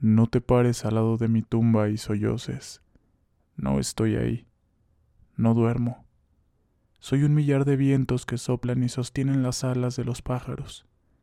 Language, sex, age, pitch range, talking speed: Spanish, male, 20-39, 100-125 Hz, 155 wpm